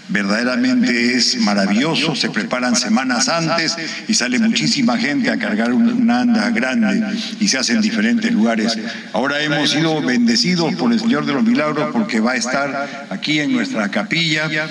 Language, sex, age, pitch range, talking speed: Spanish, male, 50-69, 215-245 Hz, 165 wpm